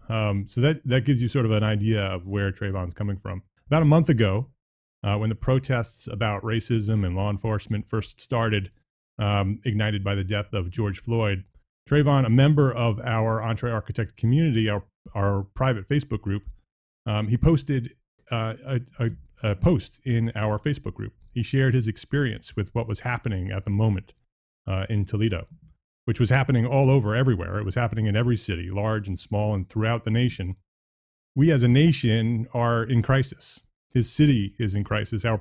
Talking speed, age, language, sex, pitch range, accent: 185 wpm, 30-49, English, male, 105-125 Hz, American